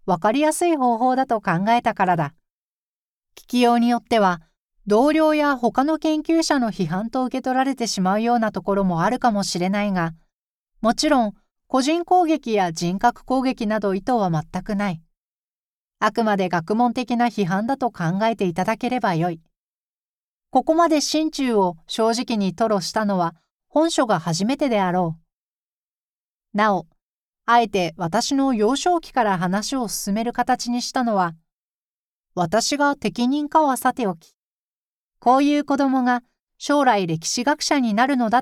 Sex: female